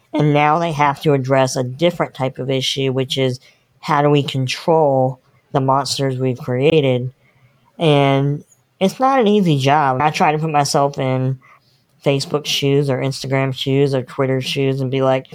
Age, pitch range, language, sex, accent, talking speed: 20-39, 135-155 Hz, English, female, American, 170 wpm